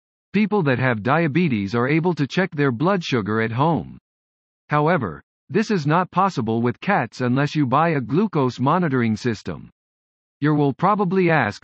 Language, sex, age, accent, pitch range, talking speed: English, male, 50-69, American, 125-175 Hz, 160 wpm